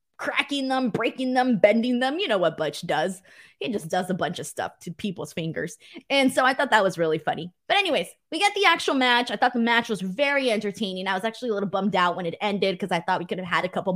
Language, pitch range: English, 185-245 Hz